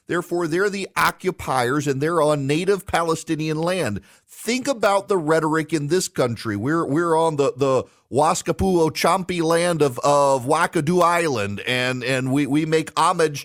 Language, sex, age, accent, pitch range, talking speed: English, male, 40-59, American, 160-205 Hz, 150 wpm